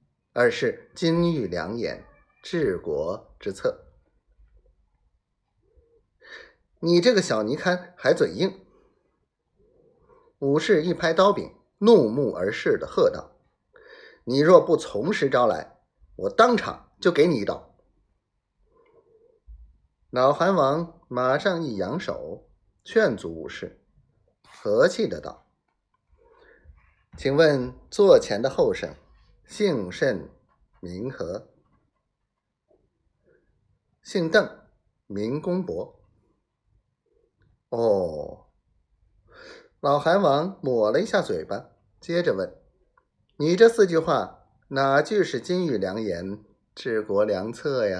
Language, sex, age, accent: Chinese, male, 30-49, native